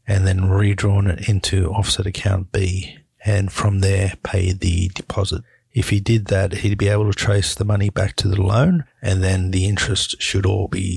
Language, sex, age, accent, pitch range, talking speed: English, male, 50-69, Australian, 95-110 Hz, 195 wpm